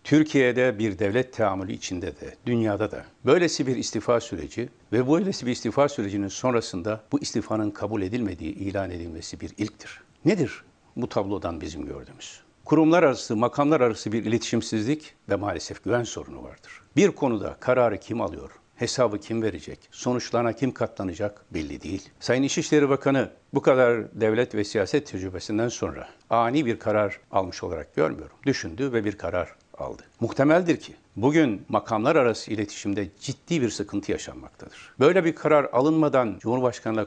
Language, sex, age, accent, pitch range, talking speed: Turkish, male, 60-79, native, 105-135 Hz, 145 wpm